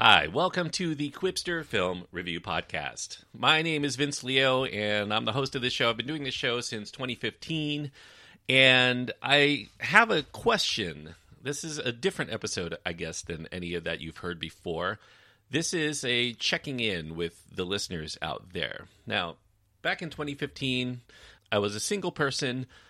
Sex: male